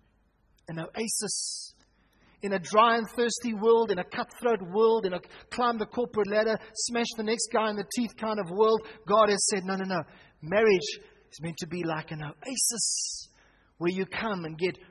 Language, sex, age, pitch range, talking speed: English, male, 30-49, 180-220 Hz, 190 wpm